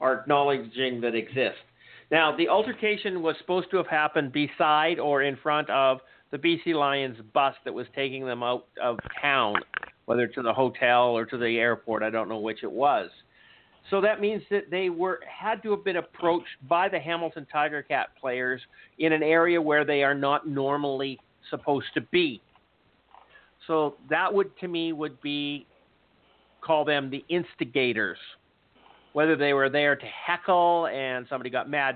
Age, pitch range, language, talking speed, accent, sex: 50-69, 130-165 Hz, English, 170 wpm, American, male